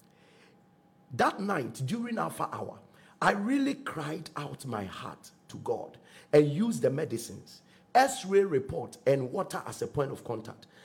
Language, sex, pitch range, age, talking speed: English, male, 140-185 Hz, 50-69, 145 wpm